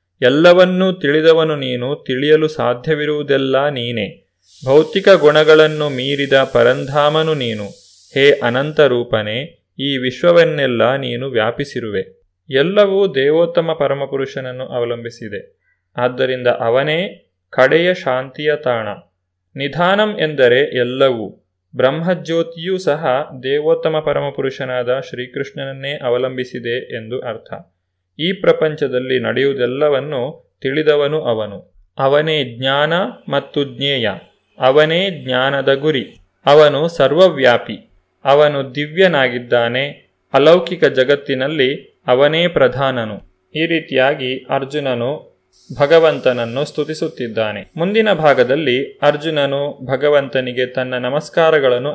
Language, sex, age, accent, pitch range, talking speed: Kannada, male, 30-49, native, 125-155 Hz, 80 wpm